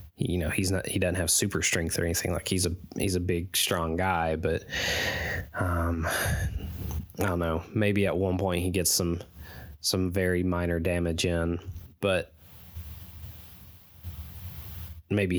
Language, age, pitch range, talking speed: English, 20-39, 85-95 Hz, 145 wpm